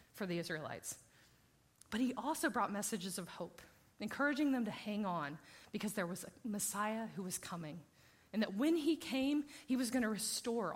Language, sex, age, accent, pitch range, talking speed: English, female, 30-49, American, 195-260 Hz, 185 wpm